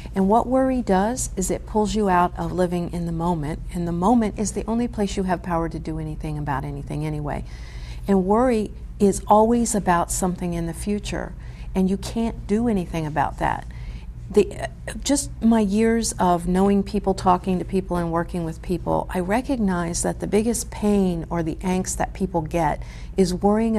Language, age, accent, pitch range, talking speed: English, 50-69, American, 160-200 Hz, 190 wpm